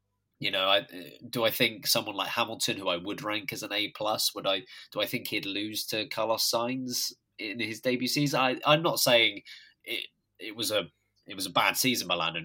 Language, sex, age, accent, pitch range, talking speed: English, male, 20-39, British, 100-145 Hz, 220 wpm